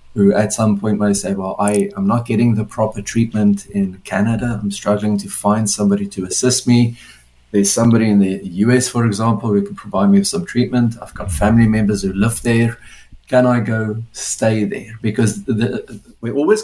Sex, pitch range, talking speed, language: male, 100-120 Hz, 200 wpm, English